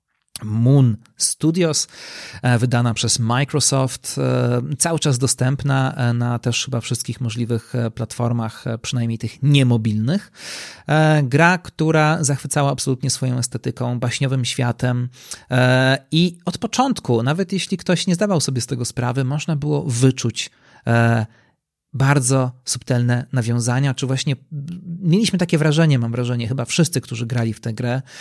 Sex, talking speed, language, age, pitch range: male, 120 wpm, Polish, 40-59, 120-145 Hz